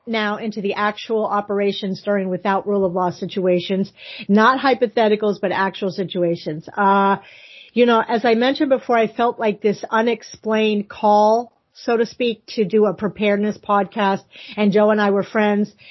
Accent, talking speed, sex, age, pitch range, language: American, 160 wpm, female, 40-59, 195-235 Hz, English